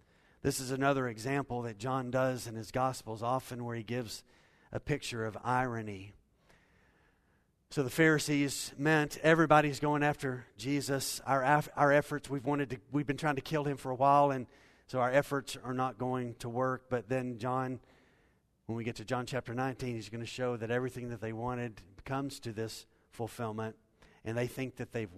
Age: 40-59